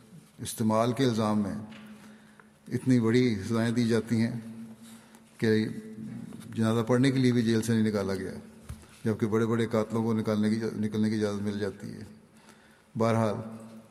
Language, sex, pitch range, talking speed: Urdu, male, 105-115 Hz, 150 wpm